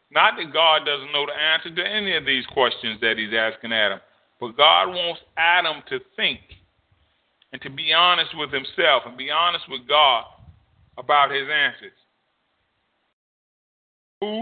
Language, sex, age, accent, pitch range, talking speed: English, male, 40-59, American, 125-175 Hz, 155 wpm